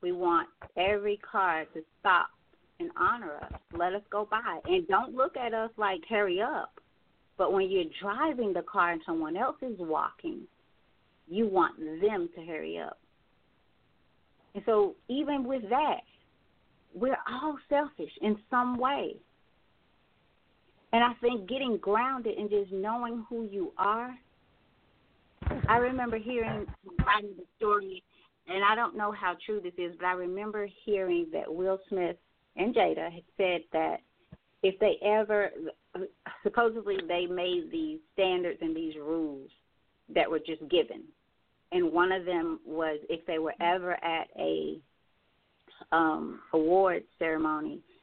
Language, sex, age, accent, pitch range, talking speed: English, female, 40-59, American, 175-245 Hz, 145 wpm